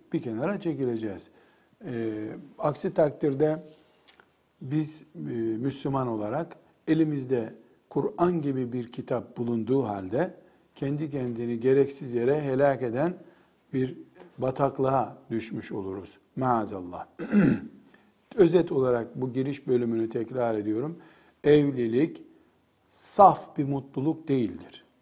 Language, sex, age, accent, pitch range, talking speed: Turkish, male, 50-69, native, 110-145 Hz, 95 wpm